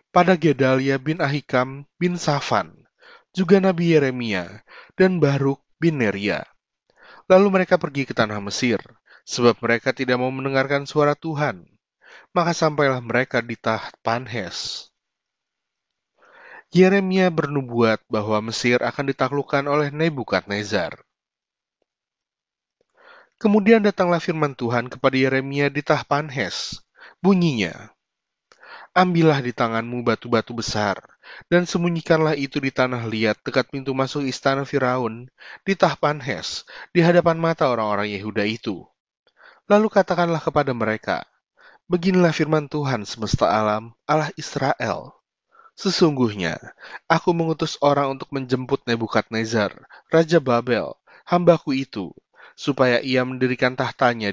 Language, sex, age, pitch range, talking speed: Indonesian, male, 30-49, 120-165 Hz, 110 wpm